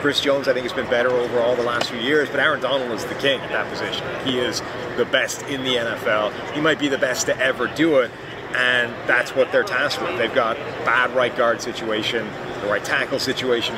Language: English